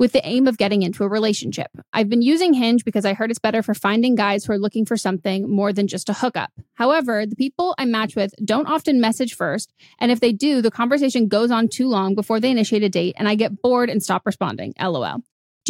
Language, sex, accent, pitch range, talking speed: English, female, American, 205-250 Hz, 245 wpm